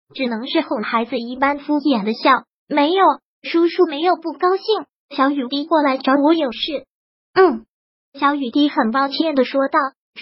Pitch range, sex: 265-325 Hz, male